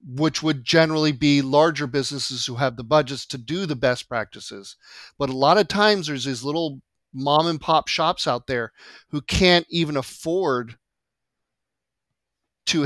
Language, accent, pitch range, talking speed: English, American, 130-155 Hz, 160 wpm